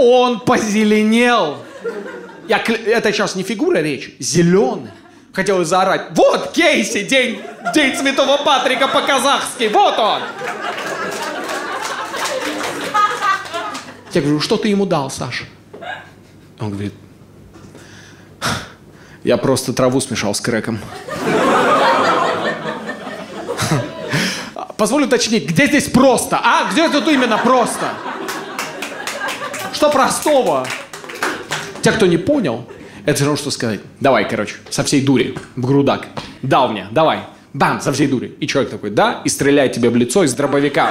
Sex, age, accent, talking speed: male, 30-49, native, 115 wpm